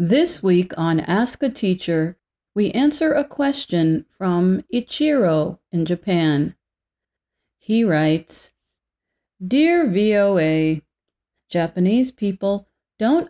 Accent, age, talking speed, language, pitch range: American, 40-59, 95 wpm, English, 165-245 Hz